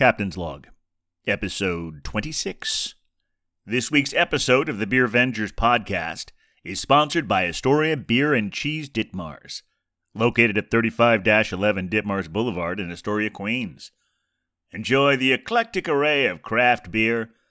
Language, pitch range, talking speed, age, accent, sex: English, 105-155 Hz, 120 wpm, 40-59, American, male